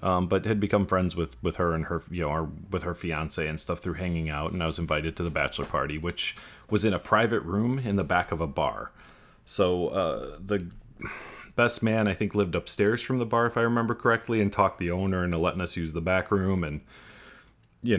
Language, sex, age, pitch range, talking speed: English, male, 30-49, 80-100 Hz, 230 wpm